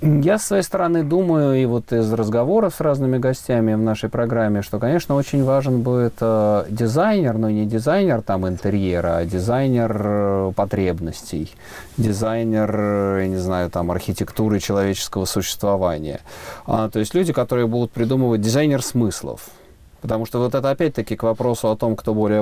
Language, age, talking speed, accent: Russian, 30-49, 155 wpm, native